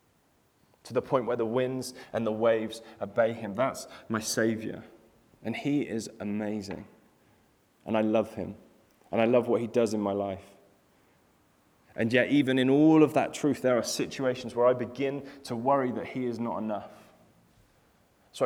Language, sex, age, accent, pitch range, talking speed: English, male, 20-39, British, 105-125 Hz, 170 wpm